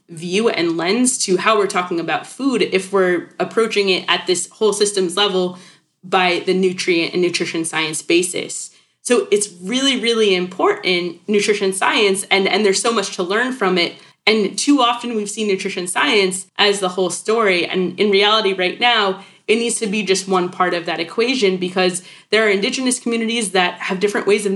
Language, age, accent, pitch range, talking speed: English, 20-39, American, 180-220 Hz, 190 wpm